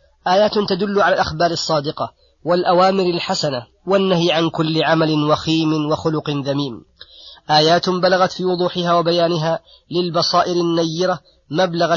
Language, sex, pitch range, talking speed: Arabic, female, 150-175 Hz, 110 wpm